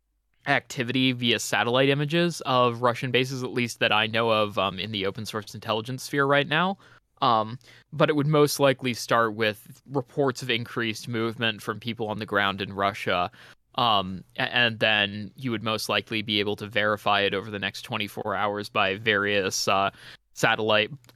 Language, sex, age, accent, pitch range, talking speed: English, male, 20-39, American, 105-130 Hz, 175 wpm